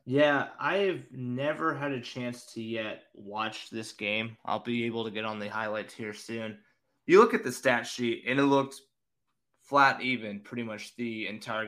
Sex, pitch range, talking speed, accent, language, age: male, 105-125 Hz, 190 wpm, American, English, 20-39